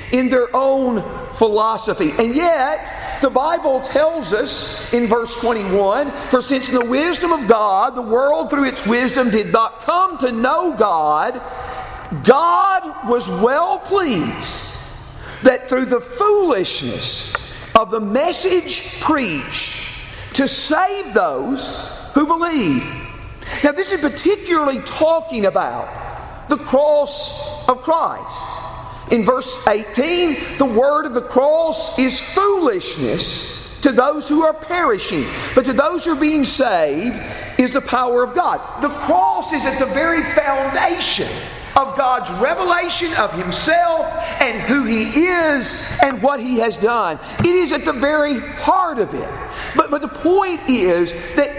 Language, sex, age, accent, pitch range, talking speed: English, male, 50-69, American, 250-325 Hz, 140 wpm